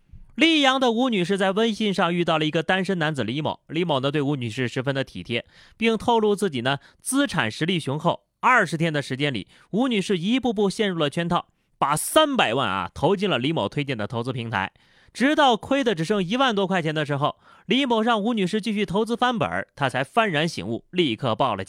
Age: 30-49